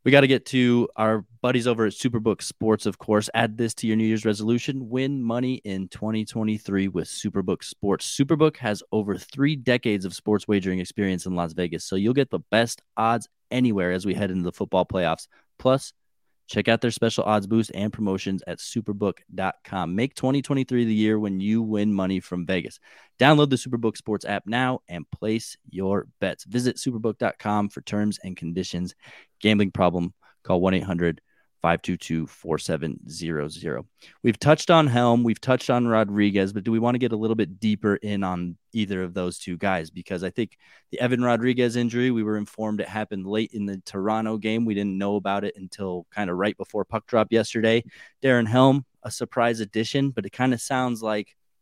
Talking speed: 190 wpm